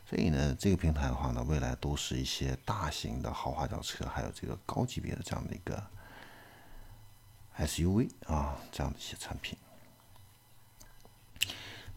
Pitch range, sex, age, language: 75-110 Hz, male, 50-69, Chinese